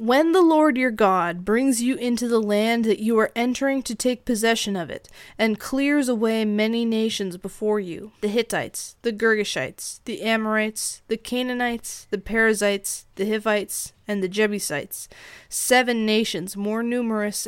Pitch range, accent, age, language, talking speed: 200-235 Hz, American, 20-39, English, 155 wpm